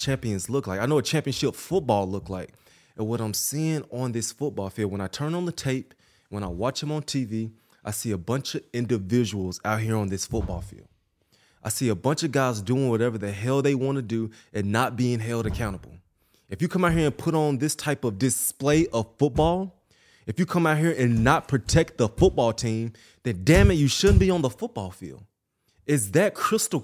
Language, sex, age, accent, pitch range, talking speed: English, male, 20-39, American, 110-150 Hz, 220 wpm